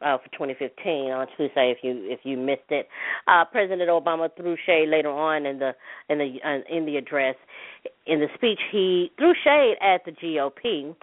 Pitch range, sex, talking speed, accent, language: 150-200 Hz, female, 190 wpm, American, English